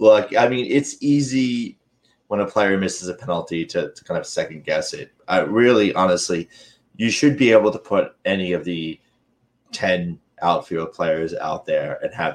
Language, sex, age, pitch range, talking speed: English, male, 30-49, 90-120 Hz, 180 wpm